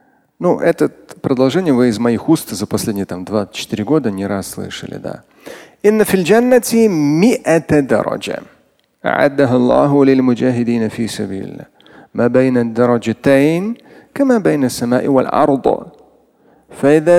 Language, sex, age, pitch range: Russian, male, 40-59, 120-190 Hz